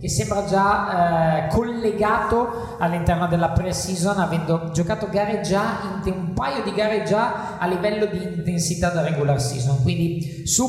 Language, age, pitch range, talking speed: Italian, 20-39, 140-185 Hz, 150 wpm